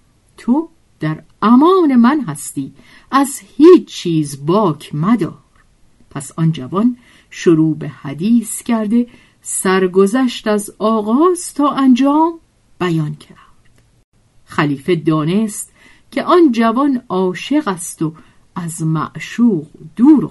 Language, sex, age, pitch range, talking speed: Persian, female, 50-69, 160-225 Hz, 105 wpm